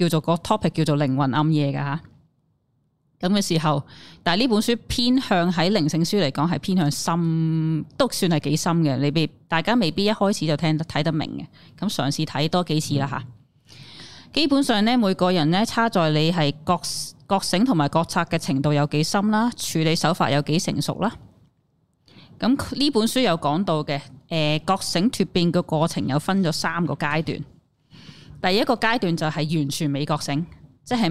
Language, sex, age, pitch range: Chinese, female, 20-39, 145-185 Hz